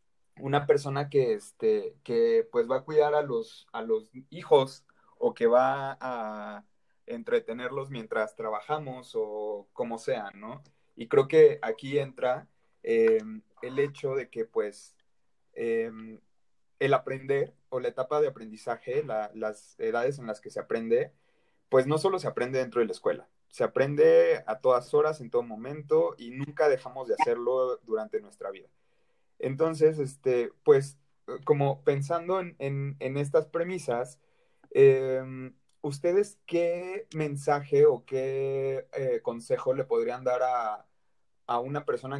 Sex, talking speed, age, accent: male, 140 wpm, 30-49, Mexican